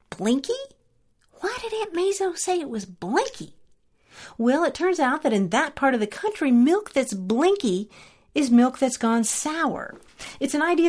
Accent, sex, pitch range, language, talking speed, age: American, female, 195-305 Hz, English, 170 wpm, 40-59